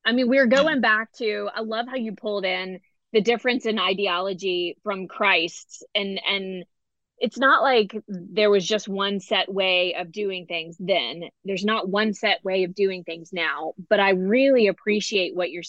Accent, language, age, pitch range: American, English, 20-39, 185-235 Hz